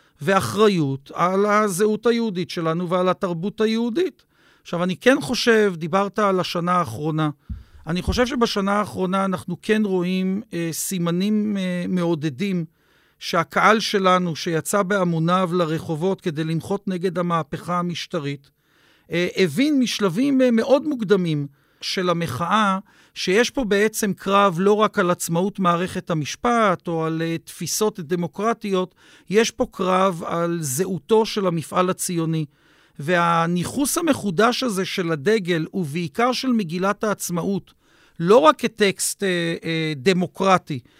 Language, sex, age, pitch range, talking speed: Hebrew, male, 50-69, 175-215 Hz, 115 wpm